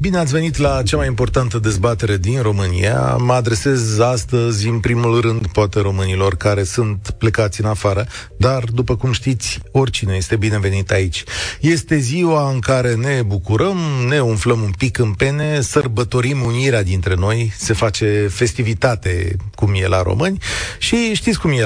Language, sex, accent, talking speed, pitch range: Romanian, male, native, 160 wpm, 105-135 Hz